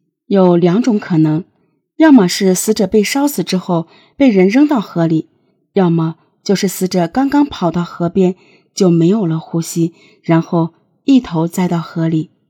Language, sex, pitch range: Chinese, female, 175-255 Hz